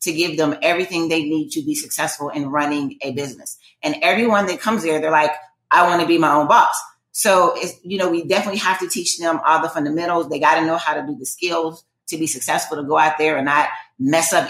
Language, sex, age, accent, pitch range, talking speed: English, female, 30-49, American, 155-185 Hz, 245 wpm